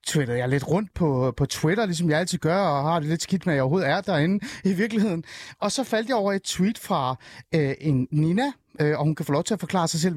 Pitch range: 140-190 Hz